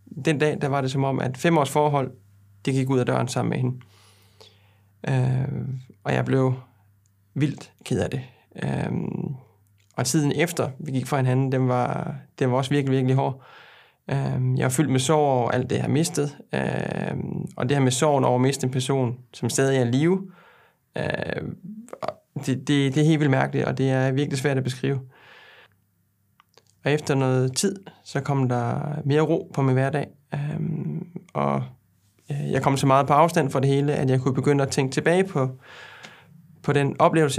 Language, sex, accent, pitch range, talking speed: Danish, male, native, 125-145 Hz, 195 wpm